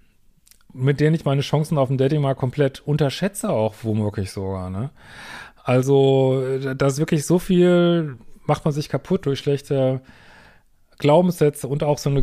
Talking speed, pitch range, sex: 155 wpm, 130-155 Hz, male